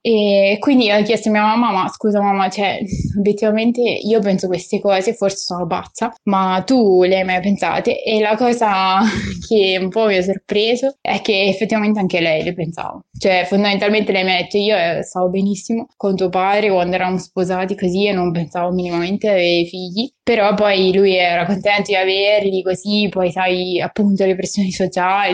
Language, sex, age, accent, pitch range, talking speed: Italian, female, 20-39, native, 180-205 Hz, 185 wpm